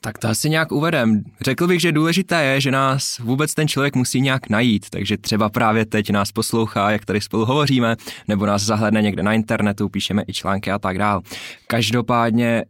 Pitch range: 105-115 Hz